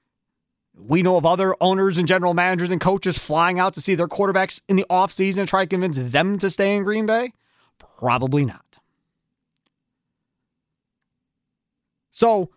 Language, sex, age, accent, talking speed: English, male, 30-49, American, 155 wpm